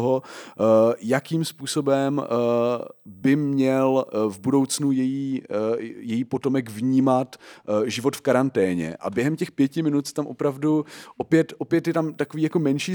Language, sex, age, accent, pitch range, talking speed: Czech, male, 30-49, native, 125-140 Hz, 135 wpm